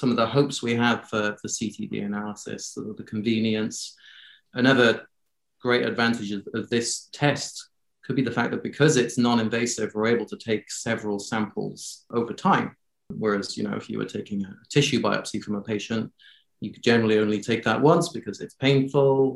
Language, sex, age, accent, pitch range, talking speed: English, male, 30-49, British, 110-135 Hz, 180 wpm